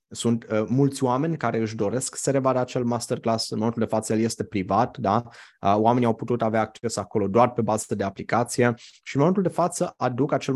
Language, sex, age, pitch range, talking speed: Romanian, male, 20-39, 105-120 Hz, 215 wpm